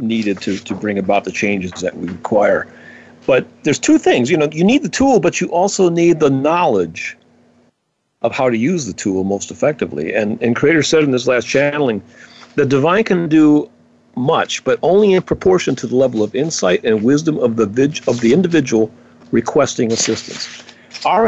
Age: 40-59